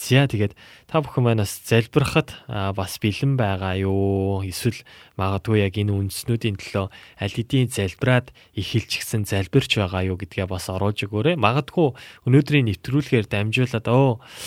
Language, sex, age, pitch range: Korean, male, 20-39, 100-125 Hz